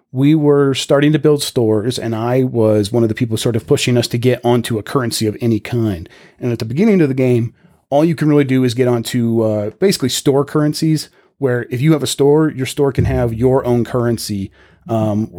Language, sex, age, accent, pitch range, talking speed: English, male, 30-49, American, 115-140 Hz, 225 wpm